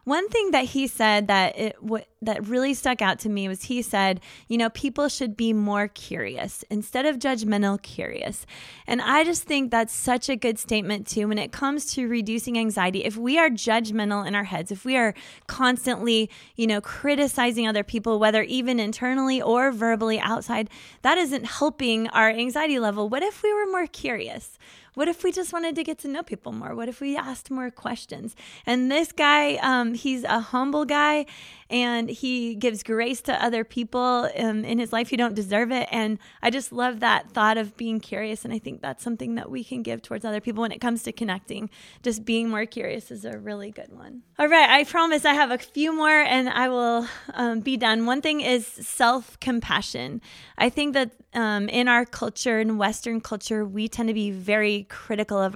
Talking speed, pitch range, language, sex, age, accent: 205 wpm, 215-260 Hz, English, female, 20-39, American